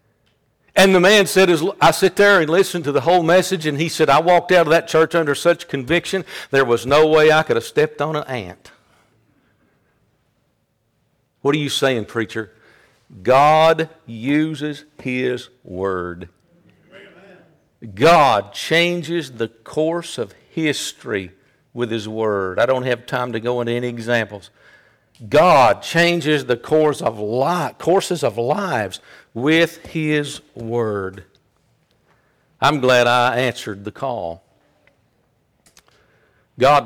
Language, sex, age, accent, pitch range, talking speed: English, male, 60-79, American, 115-160 Hz, 135 wpm